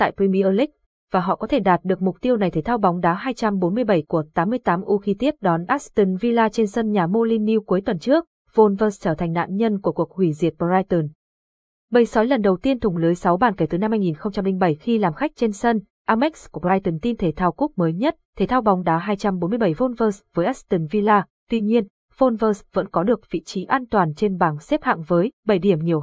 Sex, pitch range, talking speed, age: female, 180-235 Hz, 220 wpm, 20-39